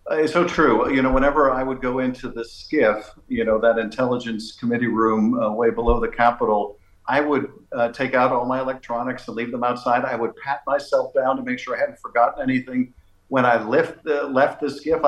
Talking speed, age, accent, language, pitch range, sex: 220 wpm, 50-69, American, English, 115-145 Hz, male